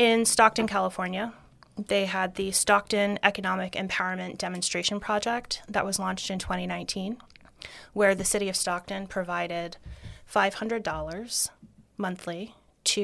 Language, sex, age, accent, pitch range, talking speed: English, female, 30-49, American, 180-210 Hz, 115 wpm